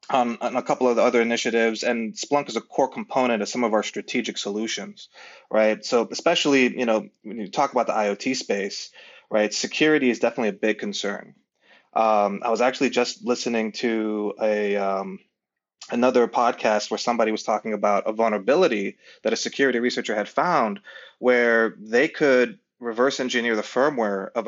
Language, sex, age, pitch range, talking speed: English, male, 20-39, 105-125 Hz, 175 wpm